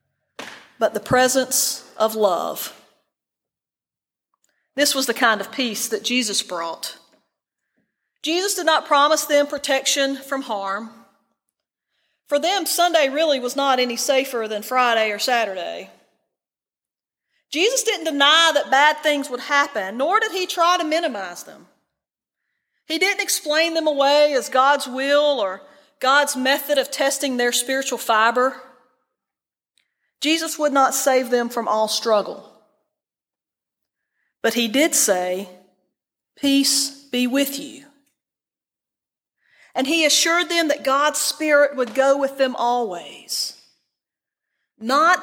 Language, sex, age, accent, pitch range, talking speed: English, female, 40-59, American, 230-290 Hz, 125 wpm